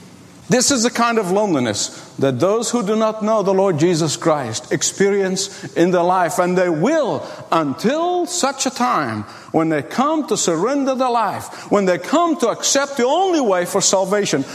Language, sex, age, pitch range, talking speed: English, male, 50-69, 190-270 Hz, 180 wpm